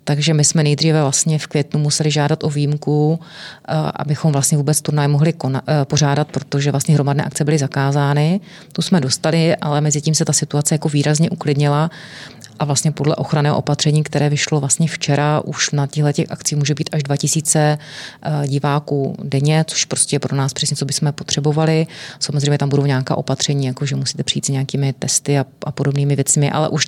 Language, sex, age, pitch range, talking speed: Czech, female, 30-49, 145-160 Hz, 180 wpm